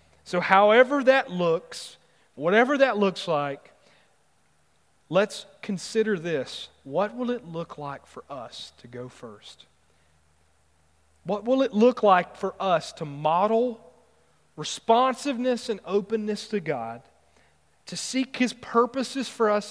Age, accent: 40-59, American